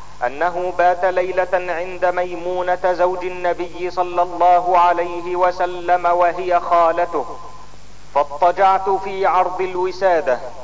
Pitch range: 180-195 Hz